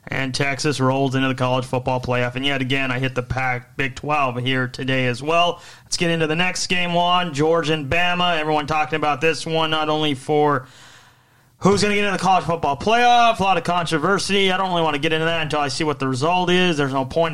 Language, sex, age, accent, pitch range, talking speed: English, male, 30-49, American, 140-165 Hz, 240 wpm